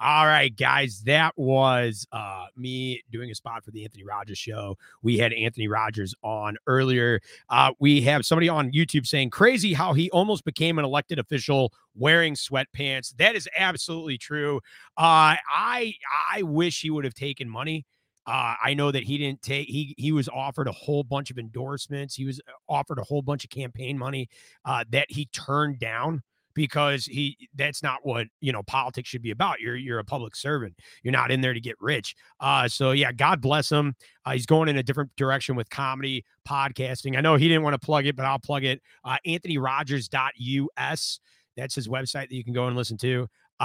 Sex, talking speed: male, 200 wpm